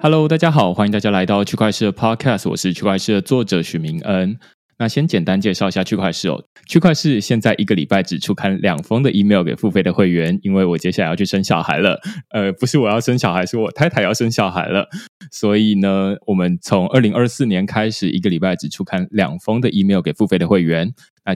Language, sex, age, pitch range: Chinese, male, 20-39, 95-145 Hz